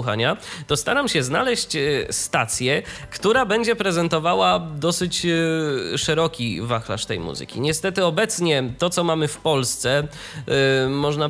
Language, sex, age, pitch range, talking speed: Polish, male, 20-39, 125-160 Hz, 110 wpm